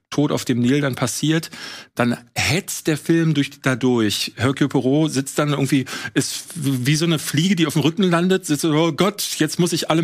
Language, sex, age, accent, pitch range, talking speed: German, male, 40-59, German, 130-170 Hz, 215 wpm